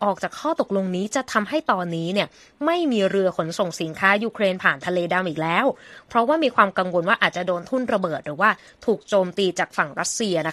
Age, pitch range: 20-39, 175-230 Hz